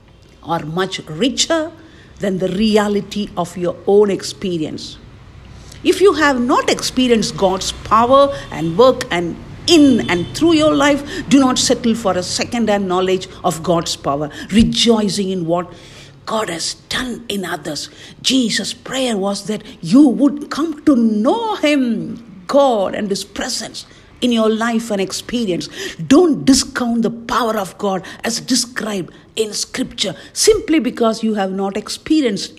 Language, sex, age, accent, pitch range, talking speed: English, female, 50-69, Indian, 185-250 Hz, 145 wpm